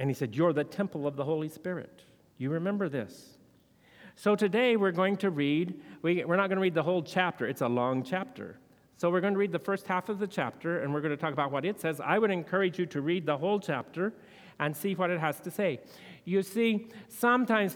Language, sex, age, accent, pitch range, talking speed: English, male, 50-69, American, 145-190 Hz, 240 wpm